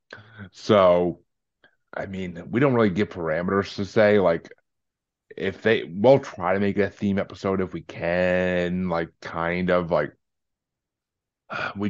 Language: English